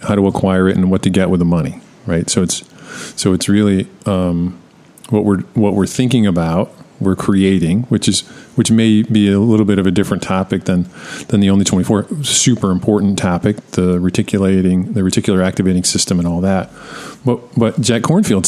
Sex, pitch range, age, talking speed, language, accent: male, 95-115 Hz, 40-59, 190 wpm, English, American